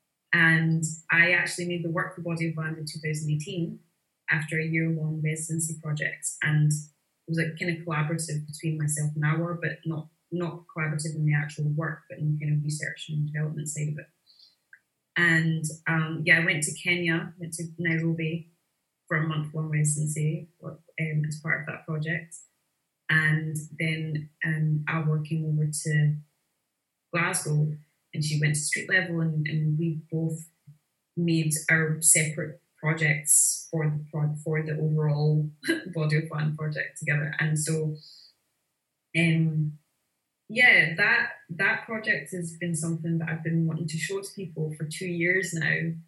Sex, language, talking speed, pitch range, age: female, English, 160 wpm, 155-170 Hz, 20-39